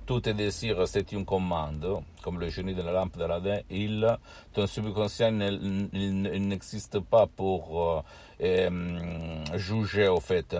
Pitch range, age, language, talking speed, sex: 85-100 Hz, 60-79, Italian, 135 wpm, male